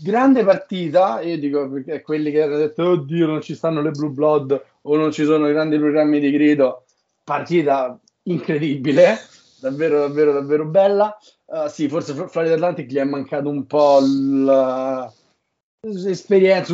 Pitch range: 135-165 Hz